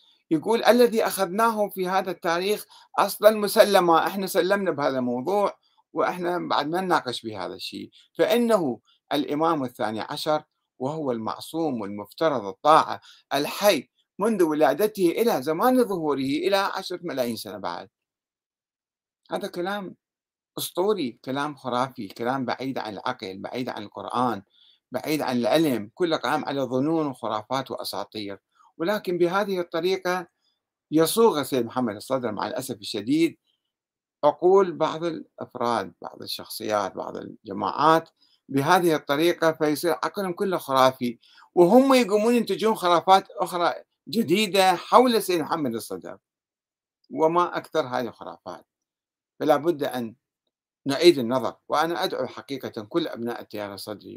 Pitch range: 125-190 Hz